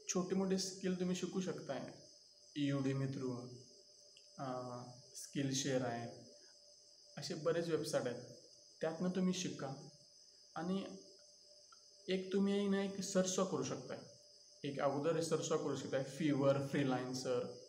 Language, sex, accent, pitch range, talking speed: Marathi, male, native, 150-195 Hz, 115 wpm